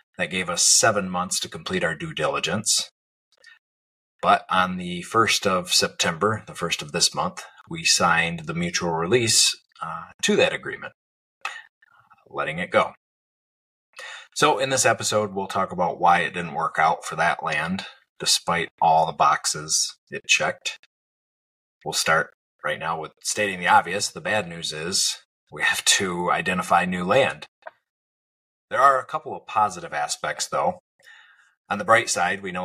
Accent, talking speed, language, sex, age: American, 160 wpm, English, male, 30-49